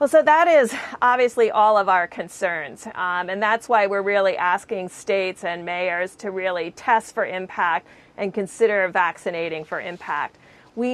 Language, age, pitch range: English, 40-59, 180-230 Hz